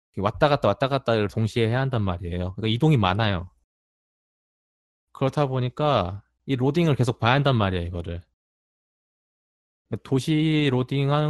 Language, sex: Korean, male